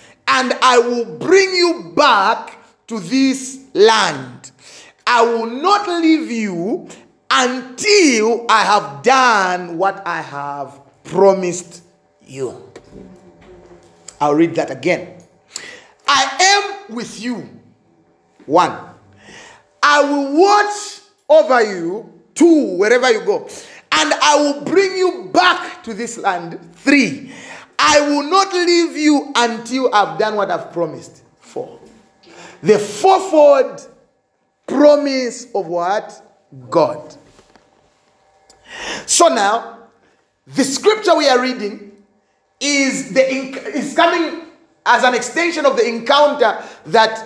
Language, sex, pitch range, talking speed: English, male, 215-305 Hz, 110 wpm